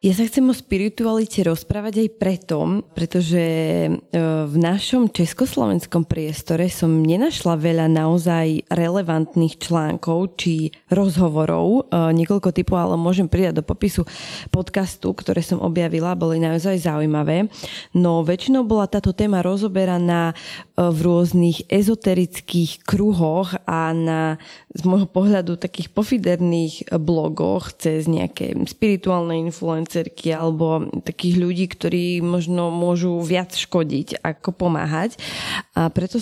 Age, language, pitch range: 20-39, Slovak, 165-190 Hz